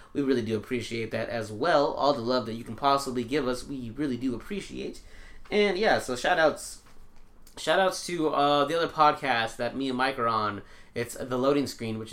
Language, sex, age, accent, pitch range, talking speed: English, male, 20-39, American, 115-145 Hz, 215 wpm